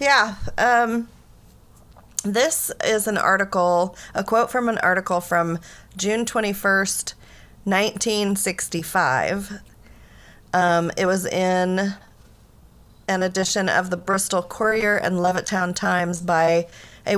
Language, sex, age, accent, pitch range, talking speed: English, female, 30-49, American, 170-205 Hz, 105 wpm